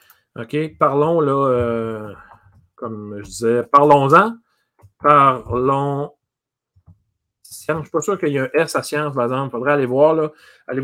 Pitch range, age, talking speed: 130-170 Hz, 40-59, 165 wpm